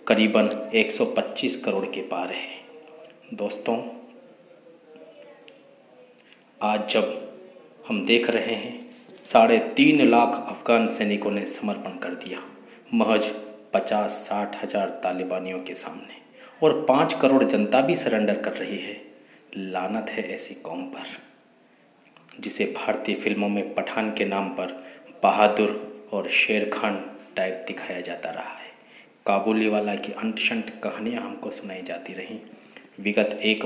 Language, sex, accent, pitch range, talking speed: Hindi, male, native, 105-175 Hz, 125 wpm